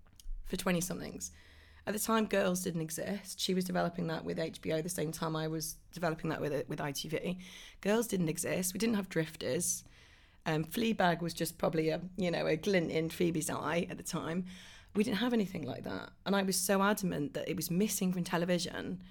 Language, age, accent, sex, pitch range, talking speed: English, 30-49, British, female, 160-195 Hz, 205 wpm